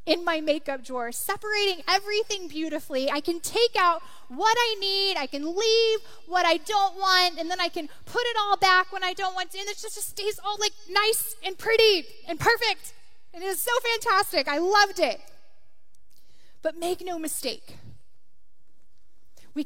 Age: 10-29